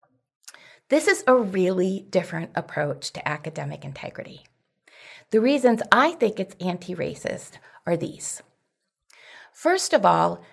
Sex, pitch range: female, 180-255 Hz